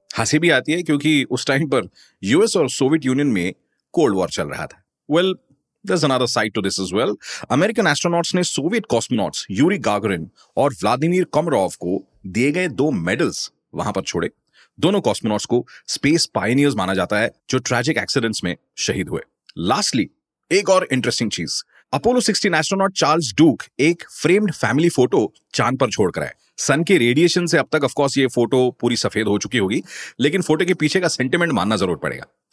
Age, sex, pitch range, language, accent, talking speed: 30-49, male, 125-170 Hz, Hindi, native, 170 wpm